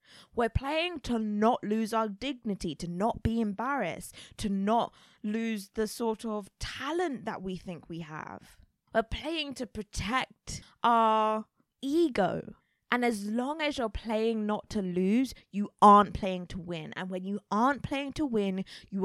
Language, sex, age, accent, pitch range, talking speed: English, female, 20-39, British, 190-255 Hz, 160 wpm